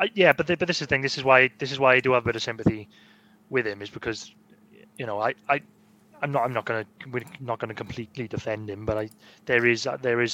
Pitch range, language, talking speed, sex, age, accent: 110-130 Hz, English, 280 wpm, male, 20-39, British